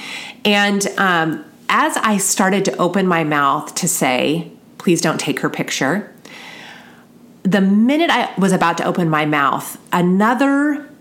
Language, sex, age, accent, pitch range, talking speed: English, female, 30-49, American, 150-195 Hz, 140 wpm